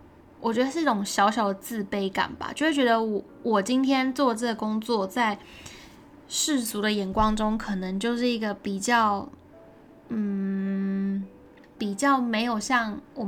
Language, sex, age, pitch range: Chinese, female, 10-29, 210-270 Hz